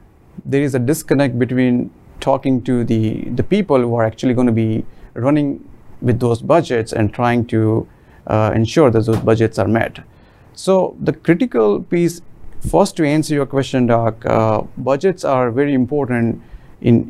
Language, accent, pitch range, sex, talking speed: English, Indian, 115-135 Hz, male, 160 wpm